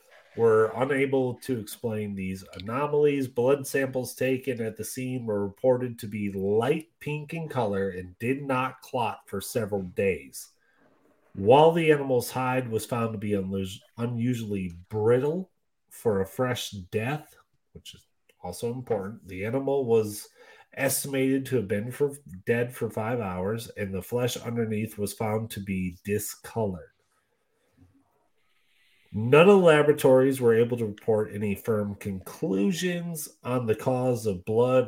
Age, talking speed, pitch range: 30-49, 140 wpm, 105-140 Hz